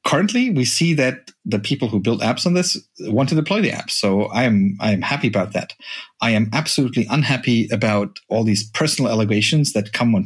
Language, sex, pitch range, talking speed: English, male, 110-145 Hz, 210 wpm